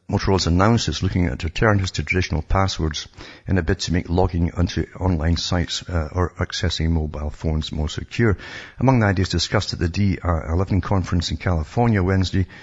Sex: male